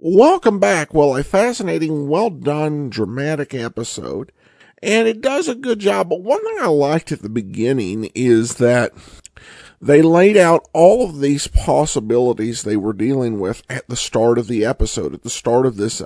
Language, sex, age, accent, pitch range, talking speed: English, male, 50-69, American, 115-155 Hz, 170 wpm